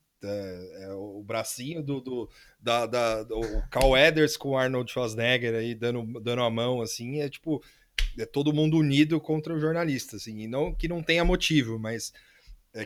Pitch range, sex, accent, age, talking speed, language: 115-150 Hz, male, Brazilian, 30-49, 175 wpm, Portuguese